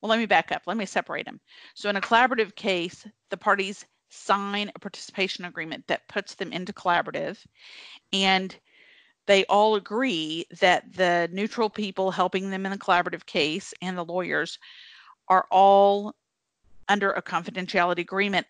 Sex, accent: female, American